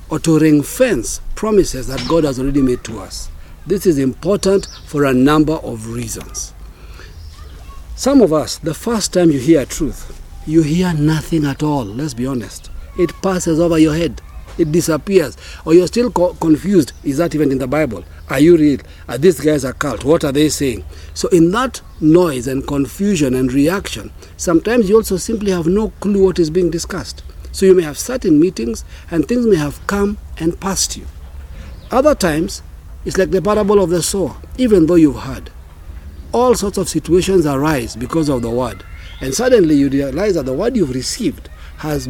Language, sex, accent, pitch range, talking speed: English, male, South African, 120-185 Hz, 185 wpm